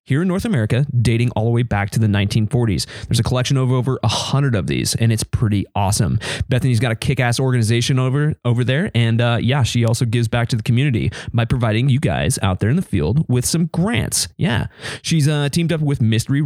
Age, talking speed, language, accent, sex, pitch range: 20-39, 220 wpm, English, American, male, 110-130 Hz